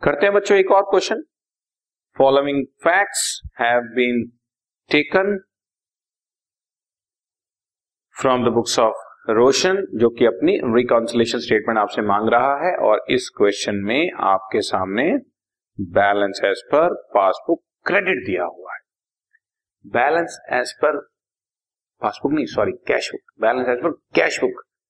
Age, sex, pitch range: 50-69, male, 125-200 Hz